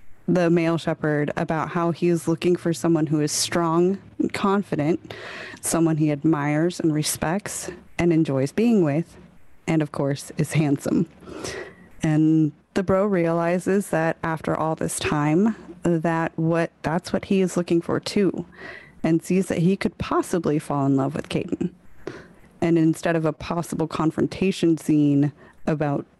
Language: English